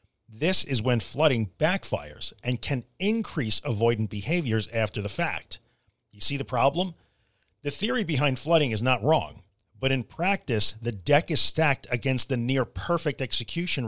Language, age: English, 40-59